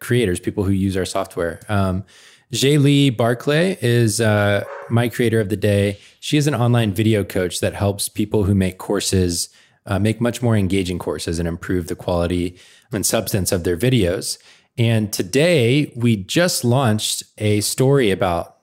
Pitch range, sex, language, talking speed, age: 95-120 Hz, male, English, 165 wpm, 20-39